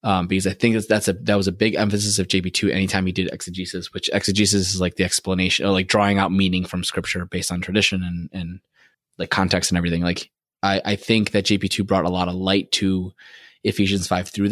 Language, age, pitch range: English, 20-39, 90-100 Hz